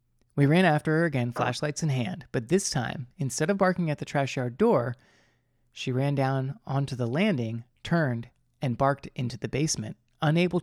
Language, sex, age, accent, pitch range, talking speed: English, male, 30-49, American, 125-155 Hz, 180 wpm